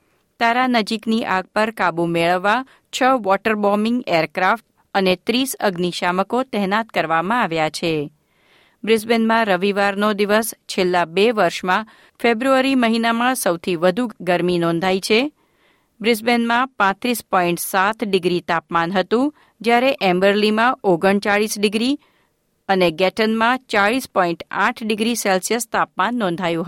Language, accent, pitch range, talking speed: Gujarati, native, 180-235 Hz, 105 wpm